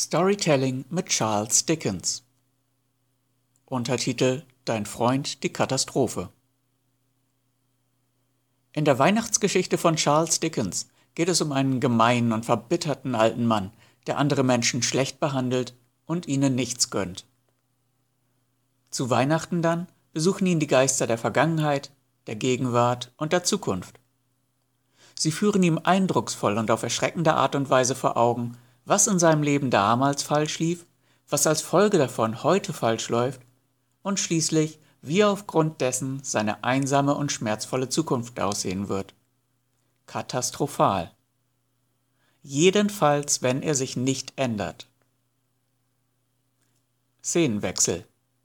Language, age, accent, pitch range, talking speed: German, 60-79, German, 125-150 Hz, 115 wpm